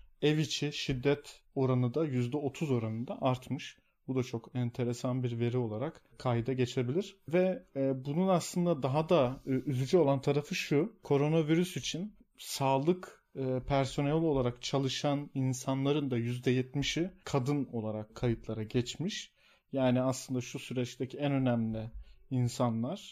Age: 40-59